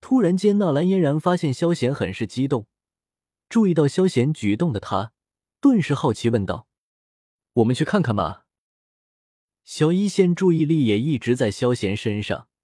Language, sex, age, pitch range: Chinese, male, 20-39, 105-170 Hz